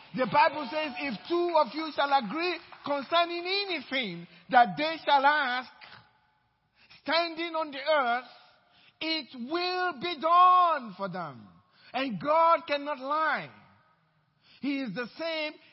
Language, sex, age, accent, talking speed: English, male, 50-69, Nigerian, 125 wpm